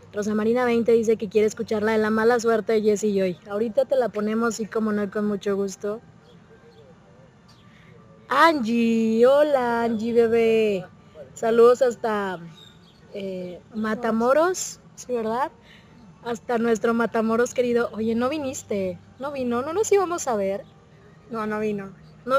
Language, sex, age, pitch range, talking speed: Spanish, female, 20-39, 205-240 Hz, 140 wpm